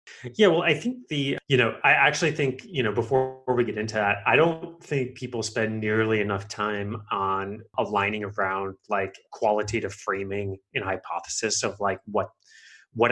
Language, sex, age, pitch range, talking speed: English, male, 30-49, 105-130 Hz, 170 wpm